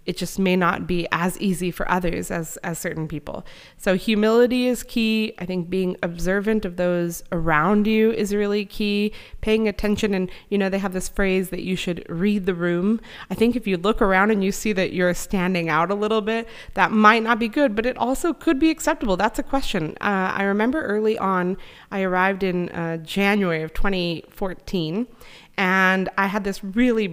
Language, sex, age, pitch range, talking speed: Hungarian, female, 30-49, 180-245 Hz, 200 wpm